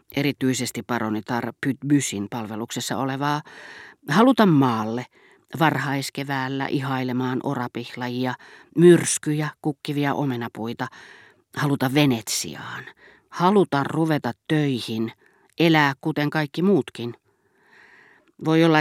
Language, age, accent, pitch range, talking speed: Finnish, 40-59, native, 125-155 Hz, 80 wpm